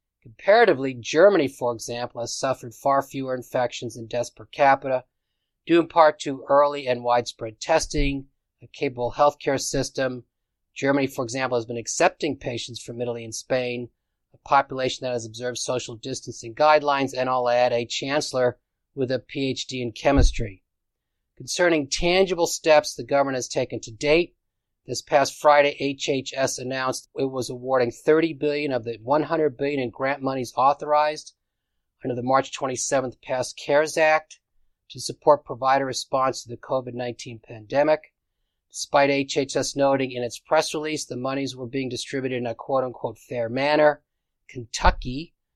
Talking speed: 150 wpm